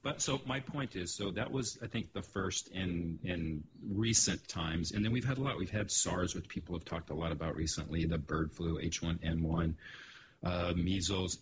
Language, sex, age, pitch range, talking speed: English, male, 40-59, 80-100 Hz, 205 wpm